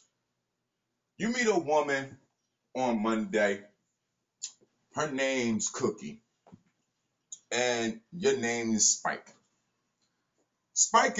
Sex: male